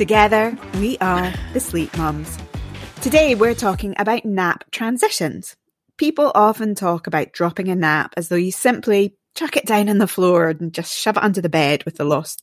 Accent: British